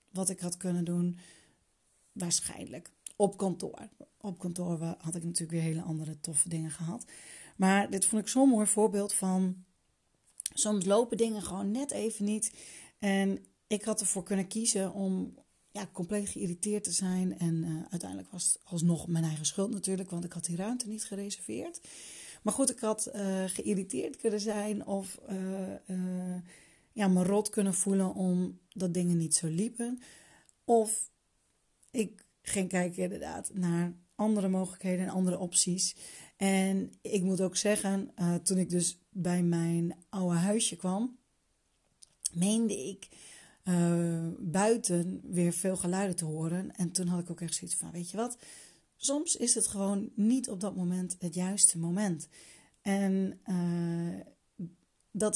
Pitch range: 175-210 Hz